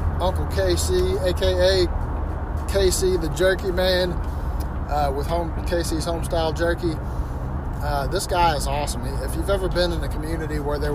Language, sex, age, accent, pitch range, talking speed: English, male, 30-49, American, 75-95 Hz, 150 wpm